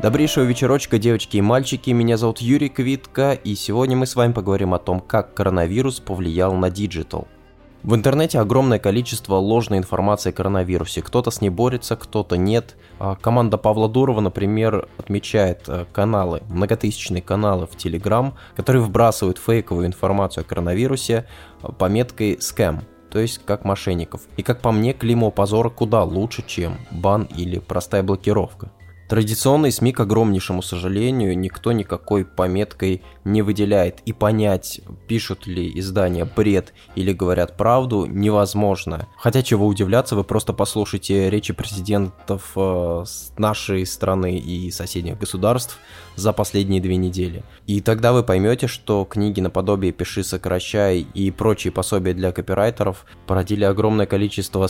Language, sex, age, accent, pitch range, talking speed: Russian, male, 20-39, native, 90-115 Hz, 140 wpm